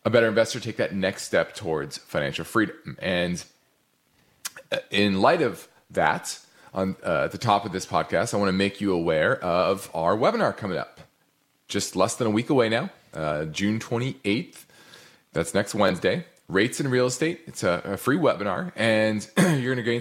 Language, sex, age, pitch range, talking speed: English, male, 30-49, 95-130 Hz, 180 wpm